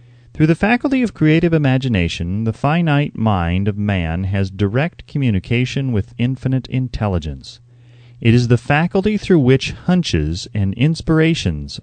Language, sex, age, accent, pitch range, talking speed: English, male, 30-49, American, 105-140 Hz, 130 wpm